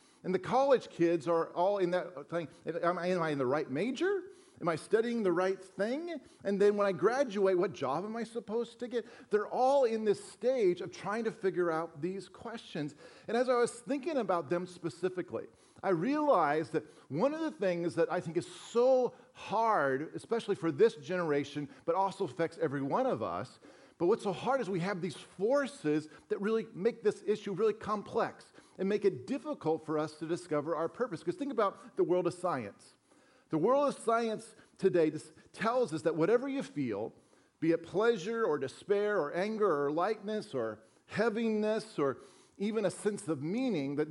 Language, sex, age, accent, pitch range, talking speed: English, male, 40-59, American, 170-225 Hz, 190 wpm